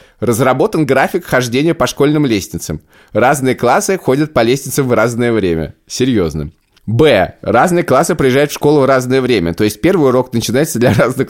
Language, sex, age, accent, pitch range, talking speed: Russian, male, 20-39, native, 120-155 Hz, 165 wpm